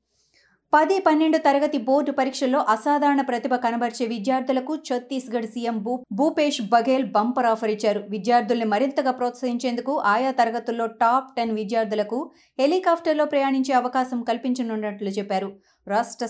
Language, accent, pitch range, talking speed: Telugu, native, 220-265 Hz, 110 wpm